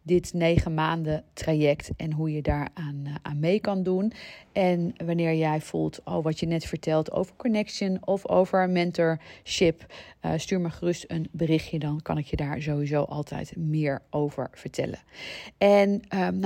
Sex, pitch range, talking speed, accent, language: female, 155-195 Hz, 165 wpm, Dutch, Dutch